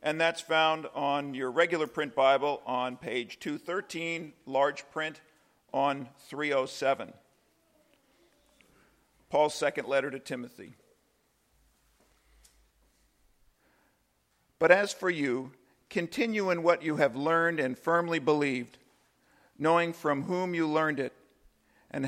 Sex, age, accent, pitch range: male, 50-69, American, 135-160 Hz